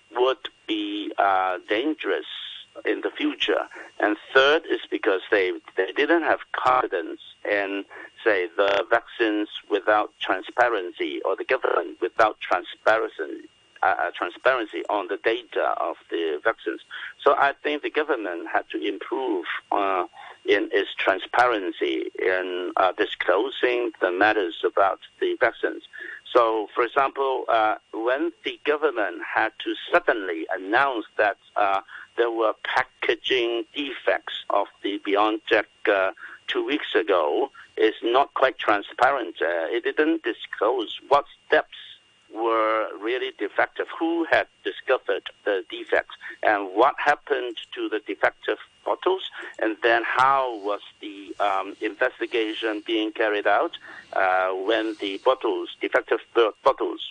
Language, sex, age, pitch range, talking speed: English, male, 60-79, 310-410 Hz, 125 wpm